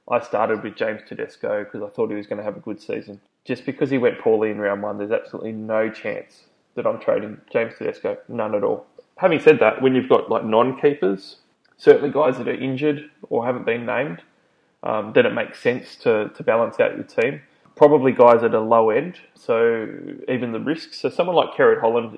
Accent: Australian